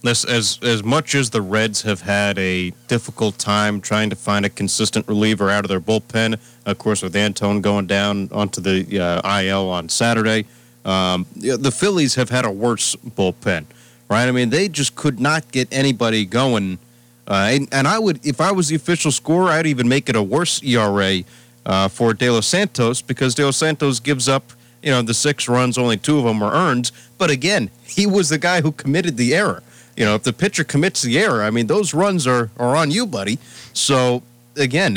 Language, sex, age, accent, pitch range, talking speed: English, male, 40-59, American, 110-135 Hz, 210 wpm